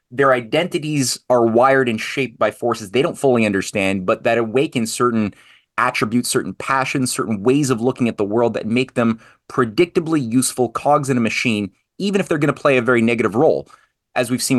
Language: English